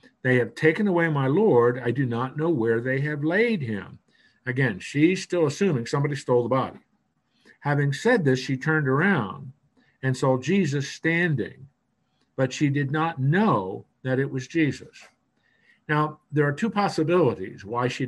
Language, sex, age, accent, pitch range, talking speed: English, male, 50-69, American, 125-160 Hz, 165 wpm